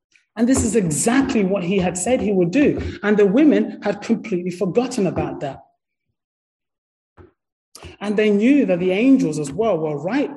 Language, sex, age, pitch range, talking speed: English, male, 30-49, 175-235 Hz, 170 wpm